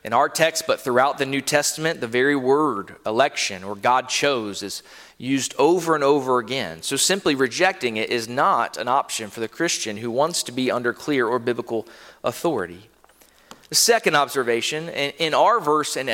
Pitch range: 130-180 Hz